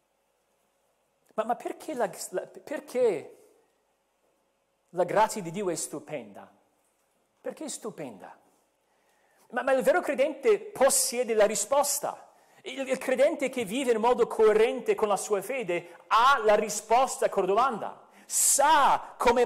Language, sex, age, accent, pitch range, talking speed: Italian, male, 40-59, native, 170-245 Hz, 135 wpm